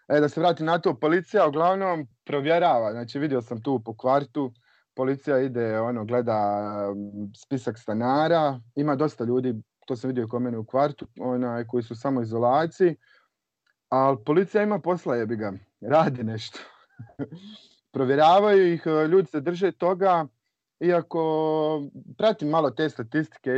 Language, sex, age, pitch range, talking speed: Croatian, male, 30-49, 115-150 Hz, 135 wpm